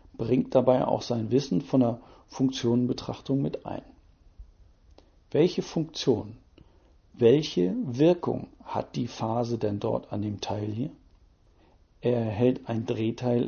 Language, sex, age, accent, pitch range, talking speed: German, male, 50-69, German, 110-130 Hz, 120 wpm